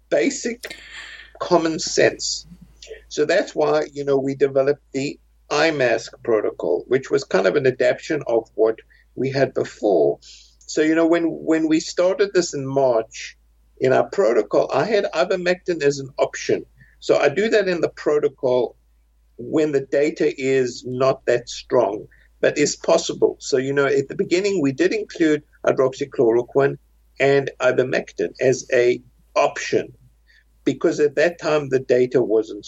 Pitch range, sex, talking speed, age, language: 130-180 Hz, male, 150 wpm, 60-79, English